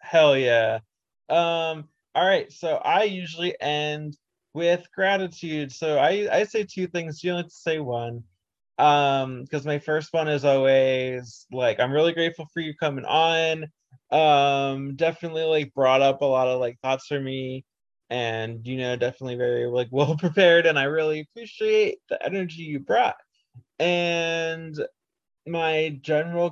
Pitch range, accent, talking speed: 120-165 Hz, American, 160 wpm